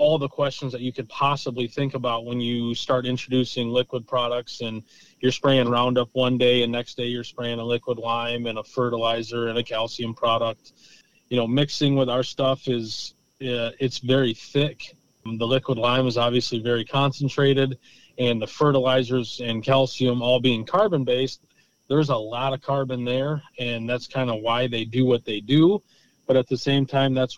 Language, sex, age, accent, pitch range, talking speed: English, male, 30-49, American, 120-140 Hz, 185 wpm